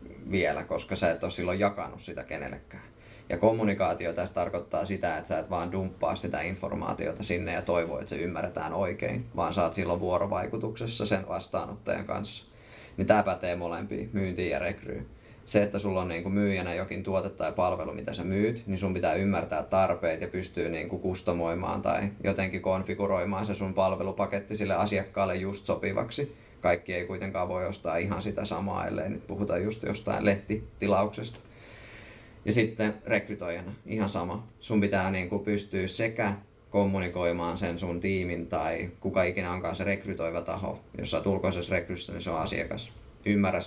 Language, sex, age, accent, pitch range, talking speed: Finnish, male, 20-39, native, 90-105 Hz, 165 wpm